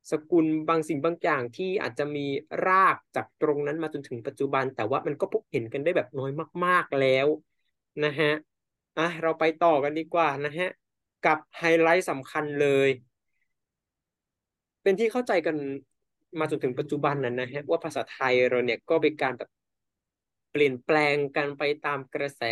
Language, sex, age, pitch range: Thai, male, 20-39, 135-165 Hz